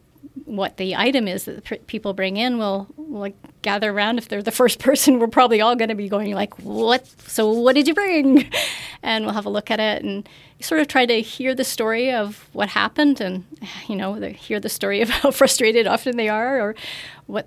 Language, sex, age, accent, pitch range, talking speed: English, female, 30-49, American, 195-235 Hz, 230 wpm